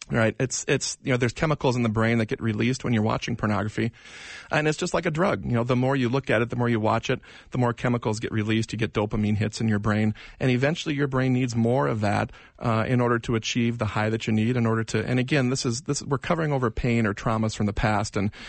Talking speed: 275 wpm